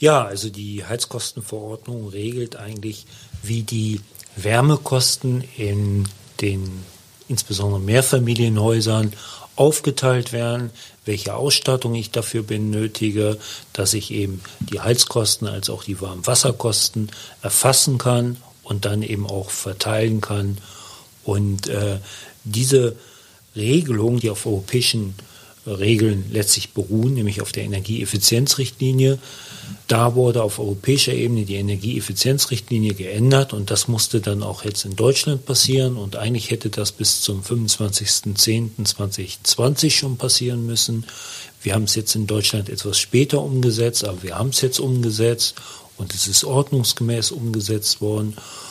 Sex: male